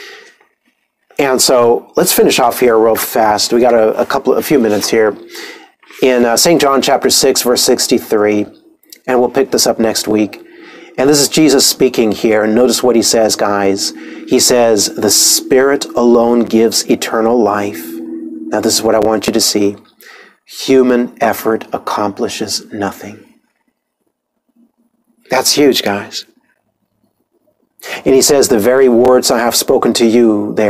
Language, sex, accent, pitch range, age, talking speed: English, male, American, 110-140 Hz, 40-59, 155 wpm